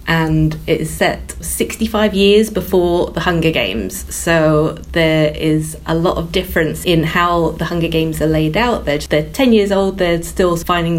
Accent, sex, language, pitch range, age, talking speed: British, female, English, 160-195 Hz, 30-49, 180 wpm